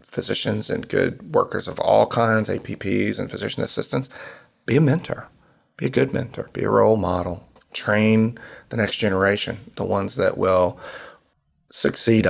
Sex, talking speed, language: male, 150 wpm, English